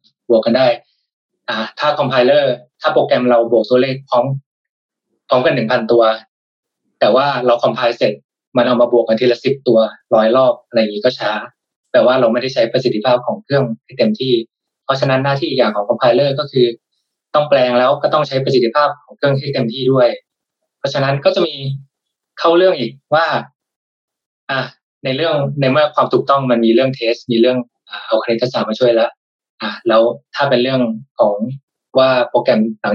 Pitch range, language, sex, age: 120-140 Hz, Thai, male, 20-39